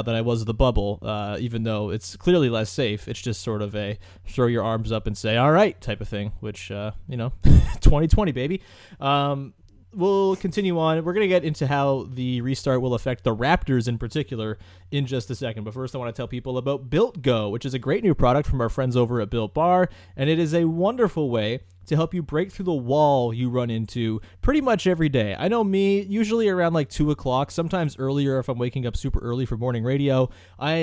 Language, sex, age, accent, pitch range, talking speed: English, male, 20-39, American, 115-155 Hz, 230 wpm